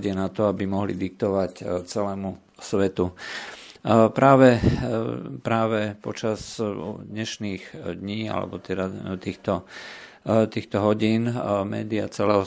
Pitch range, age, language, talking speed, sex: 95-110 Hz, 50-69, Slovak, 85 wpm, male